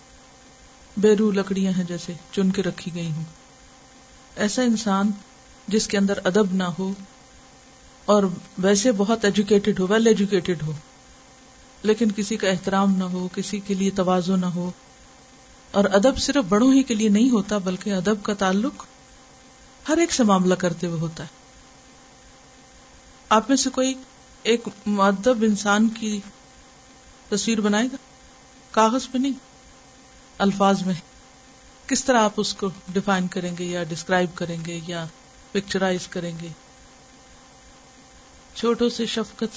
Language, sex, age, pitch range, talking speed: Urdu, female, 50-69, 195-260 Hz, 140 wpm